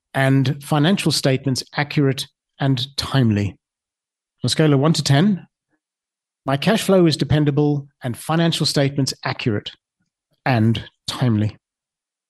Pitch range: 125-145 Hz